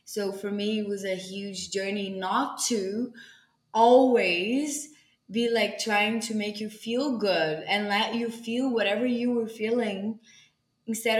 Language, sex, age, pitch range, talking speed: English, female, 20-39, 180-210 Hz, 150 wpm